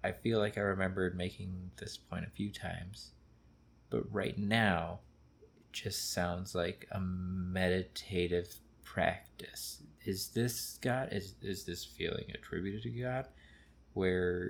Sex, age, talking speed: male, 20-39, 135 wpm